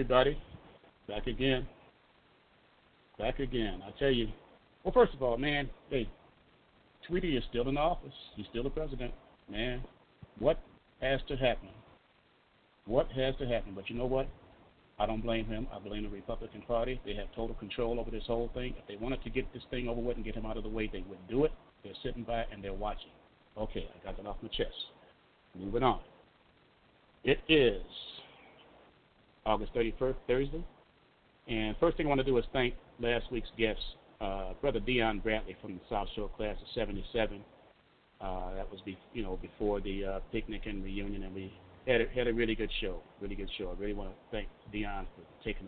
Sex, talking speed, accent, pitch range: male, 195 wpm, American, 100-125 Hz